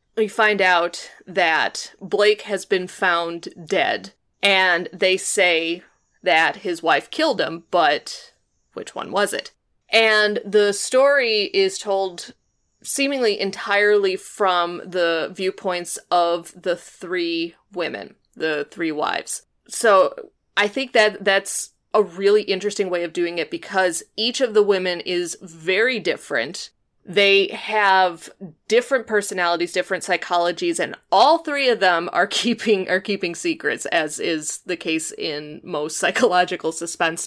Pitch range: 175-215 Hz